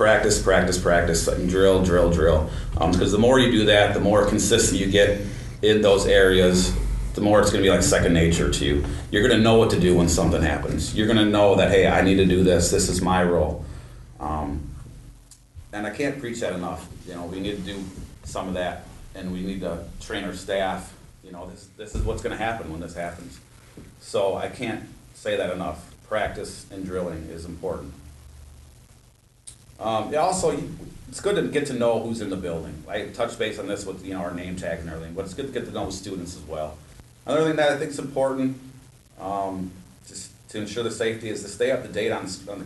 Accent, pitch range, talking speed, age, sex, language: American, 85-110 Hz, 230 wpm, 30-49, male, English